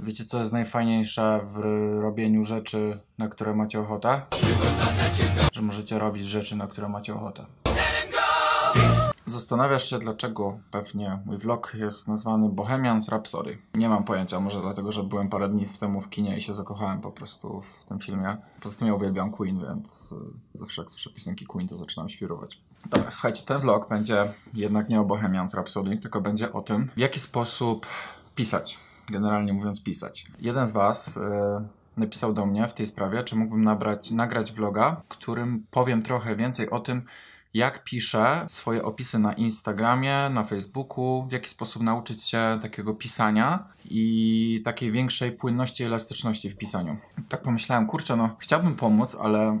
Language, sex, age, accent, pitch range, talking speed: Polish, male, 20-39, native, 105-120 Hz, 165 wpm